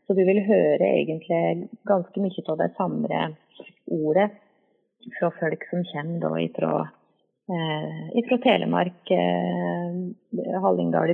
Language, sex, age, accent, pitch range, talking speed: English, female, 30-49, Swedish, 165-225 Hz, 125 wpm